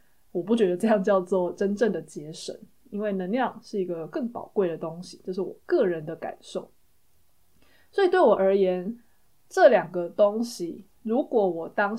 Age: 20-39